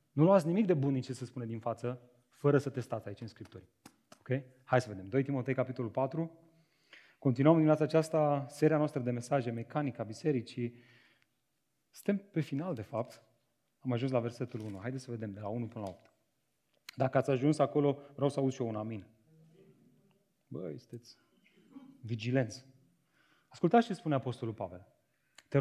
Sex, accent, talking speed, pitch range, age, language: male, native, 175 wpm, 120-155 Hz, 30-49, Romanian